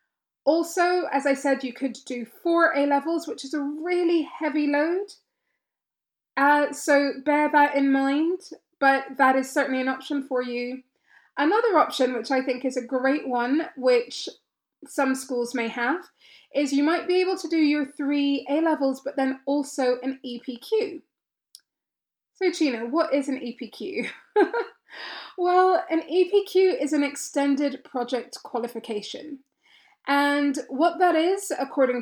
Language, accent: English, British